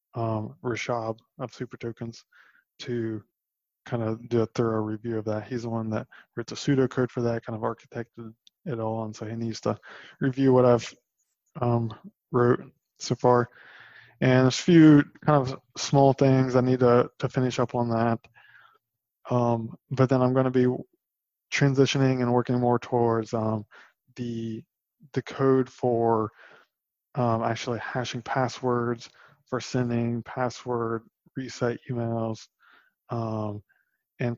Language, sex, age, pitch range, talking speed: English, male, 20-39, 115-130 Hz, 145 wpm